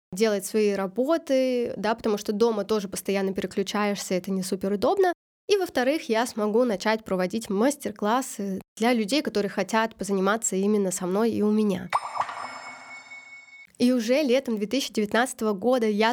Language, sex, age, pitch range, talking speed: Russian, female, 20-39, 210-245 Hz, 140 wpm